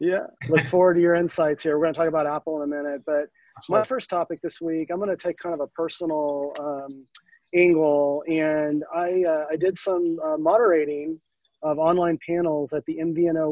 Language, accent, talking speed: English, American, 190 wpm